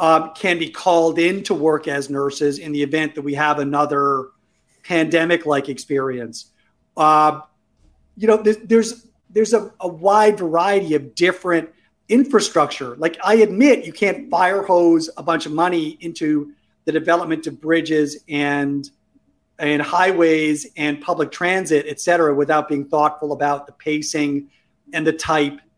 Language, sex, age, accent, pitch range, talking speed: English, male, 40-59, American, 145-185 Hz, 145 wpm